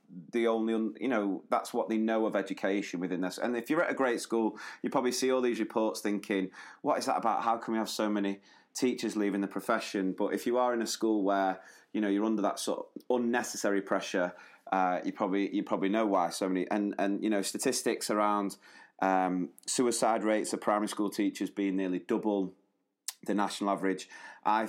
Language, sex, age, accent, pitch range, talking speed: English, male, 30-49, British, 100-115 Hz, 210 wpm